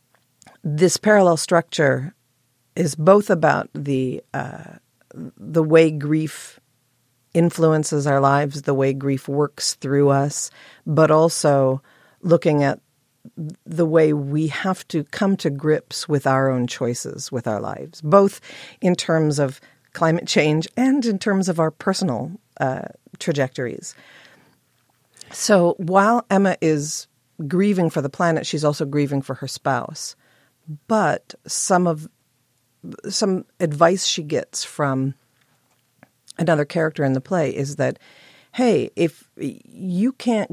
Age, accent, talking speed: 50-69, American, 125 wpm